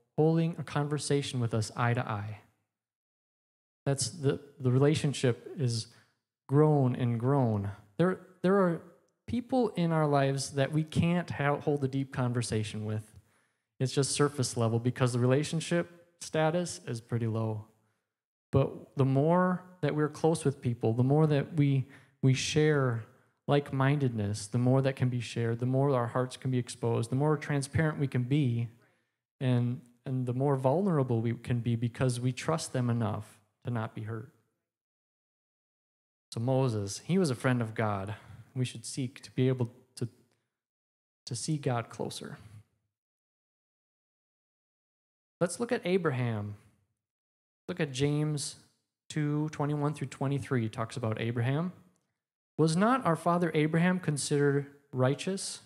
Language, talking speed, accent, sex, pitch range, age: English, 145 wpm, American, male, 120-150 Hz, 20-39